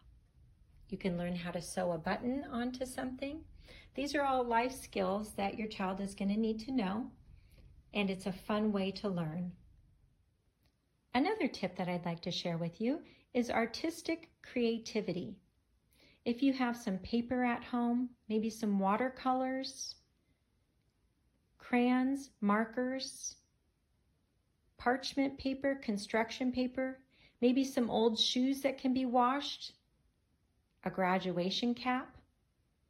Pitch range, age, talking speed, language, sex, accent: 200-255 Hz, 40-59, 125 wpm, English, female, American